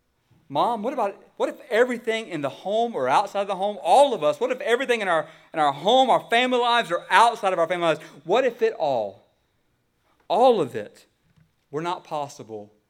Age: 40-59